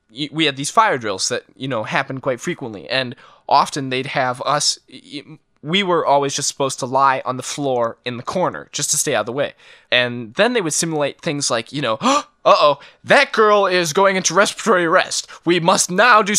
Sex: male